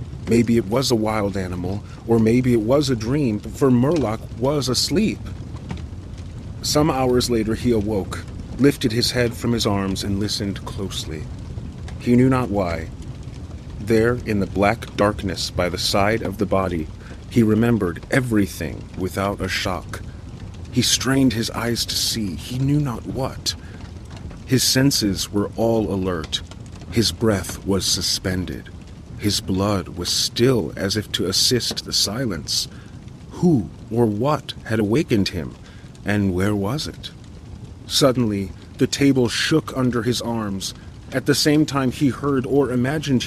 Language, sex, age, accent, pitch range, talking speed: English, male, 40-59, American, 100-130 Hz, 145 wpm